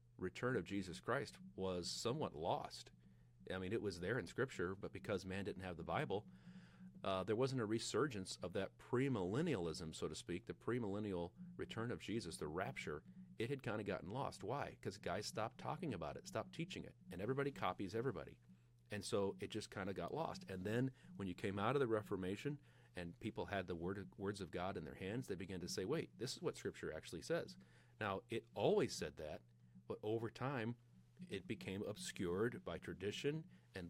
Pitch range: 90-120 Hz